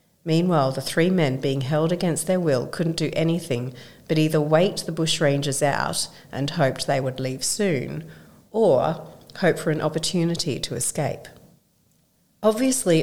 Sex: female